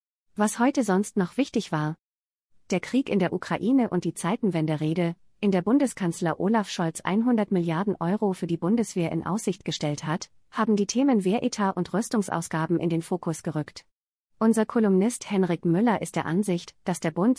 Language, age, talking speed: German, 30-49, 175 wpm